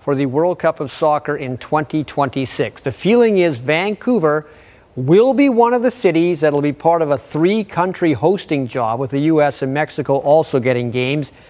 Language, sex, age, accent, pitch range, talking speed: English, male, 40-59, American, 140-200 Hz, 185 wpm